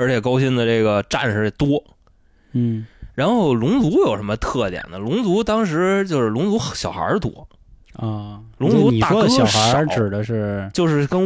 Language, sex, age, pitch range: Chinese, male, 20-39, 105-155 Hz